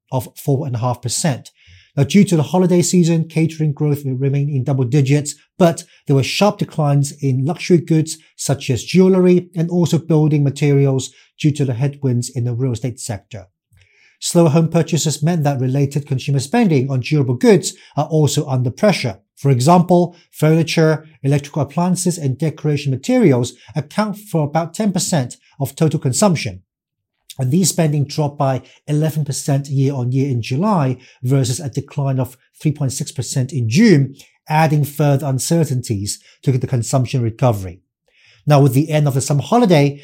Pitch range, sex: 130-160 Hz, male